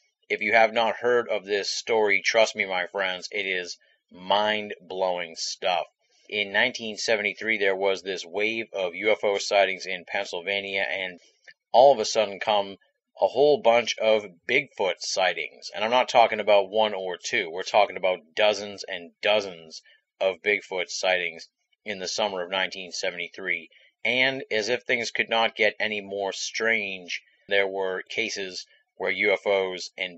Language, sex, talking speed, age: English, male, 155 wpm, 30-49